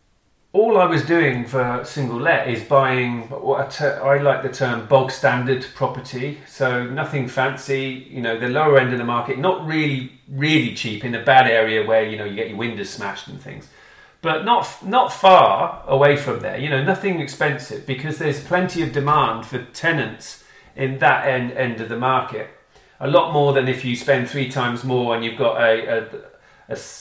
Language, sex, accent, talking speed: Swedish, male, British, 200 wpm